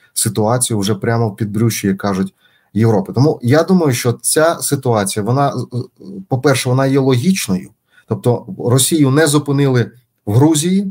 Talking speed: 140 wpm